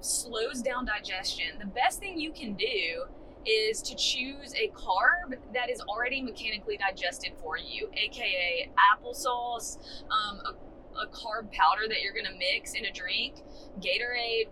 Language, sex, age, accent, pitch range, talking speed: English, female, 20-39, American, 205-290 Hz, 155 wpm